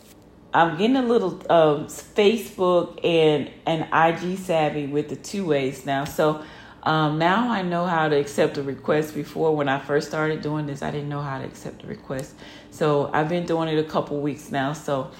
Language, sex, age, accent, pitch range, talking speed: English, female, 30-49, American, 150-180 Hz, 195 wpm